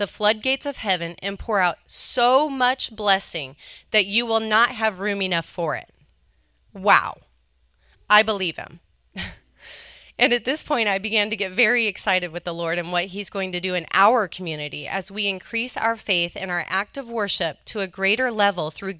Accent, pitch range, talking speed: American, 170-220 Hz, 190 wpm